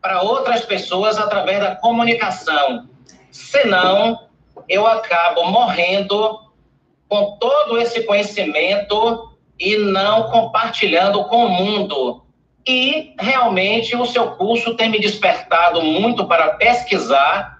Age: 40-59